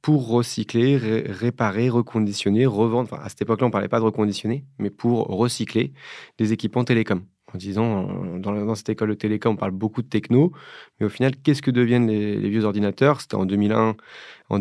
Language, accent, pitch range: French, French, 100-125 Hz